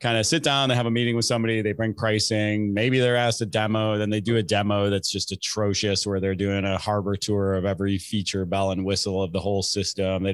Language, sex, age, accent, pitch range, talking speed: English, male, 30-49, American, 100-120 Hz, 250 wpm